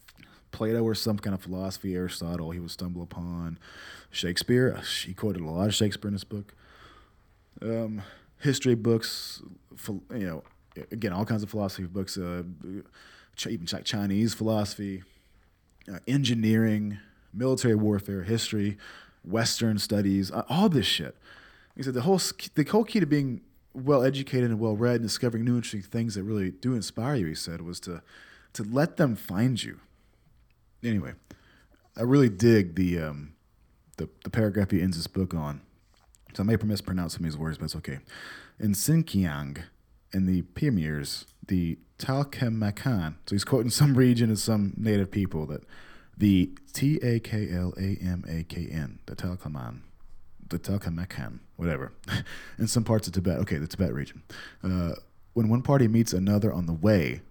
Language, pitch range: English, 90-115 Hz